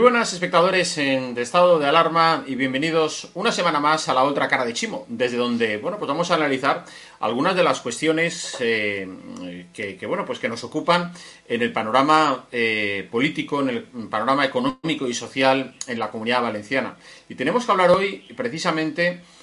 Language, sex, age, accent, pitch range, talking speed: Spanish, male, 30-49, Spanish, 120-175 Hz, 165 wpm